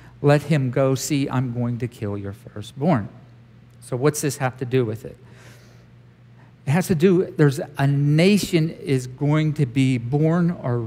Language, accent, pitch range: English, American, 120-160 Hz